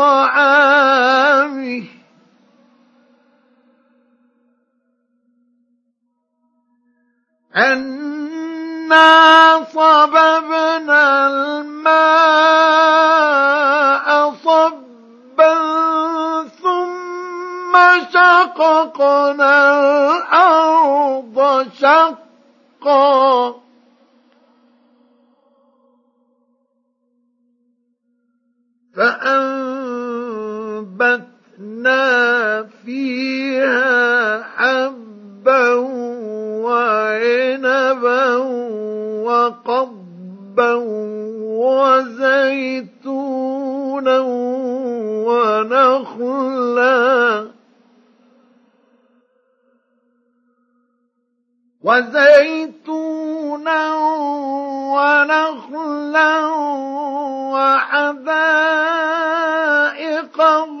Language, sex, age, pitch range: Arabic, male, 50-69, 245-295 Hz